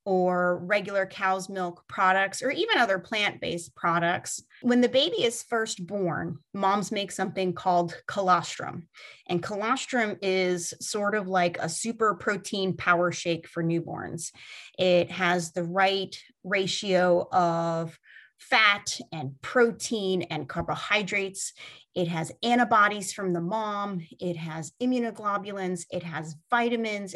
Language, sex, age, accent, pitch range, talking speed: English, female, 30-49, American, 175-220 Hz, 130 wpm